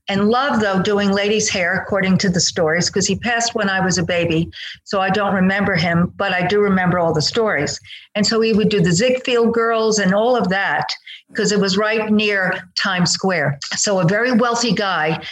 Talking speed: 210 wpm